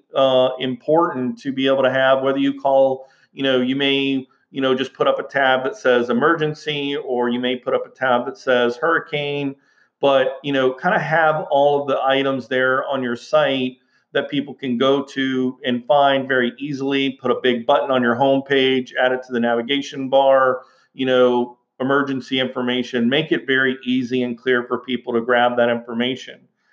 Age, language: 40-59, English